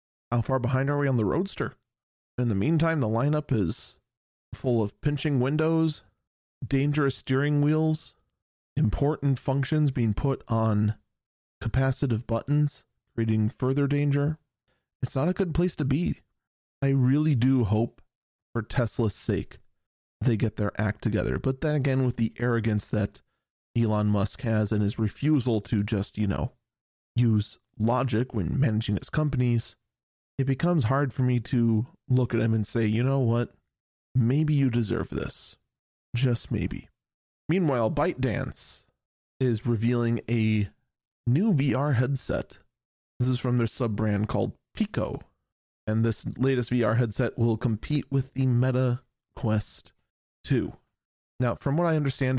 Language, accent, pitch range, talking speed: English, American, 110-135 Hz, 145 wpm